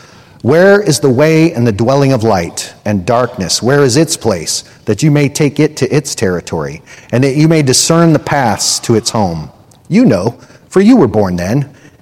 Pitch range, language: 110-150 Hz, English